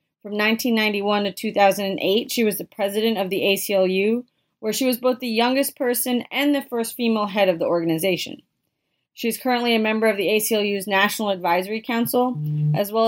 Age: 30-49